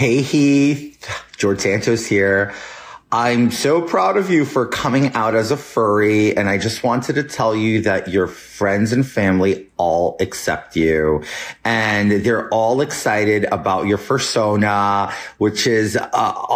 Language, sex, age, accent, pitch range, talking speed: English, male, 30-49, American, 105-130 Hz, 150 wpm